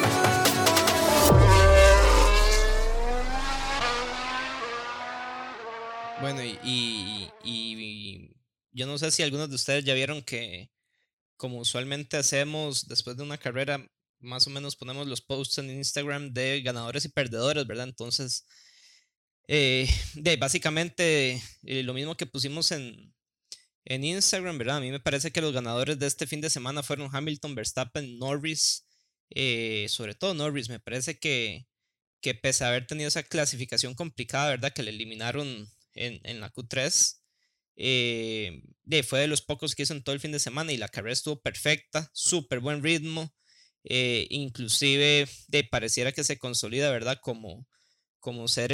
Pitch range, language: 120-150 Hz, Spanish